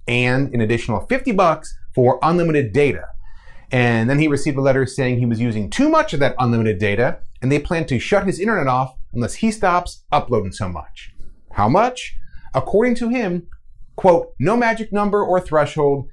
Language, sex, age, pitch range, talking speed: English, male, 30-49, 110-165 Hz, 180 wpm